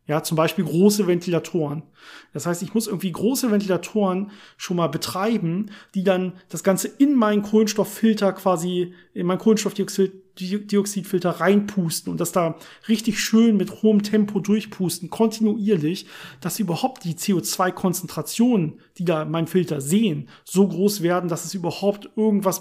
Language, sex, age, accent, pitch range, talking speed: German, male, 40-59, German, 170-205 Hz, 140 wpm